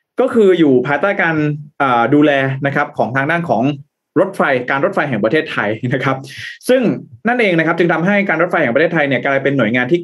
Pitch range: 130-170 Hz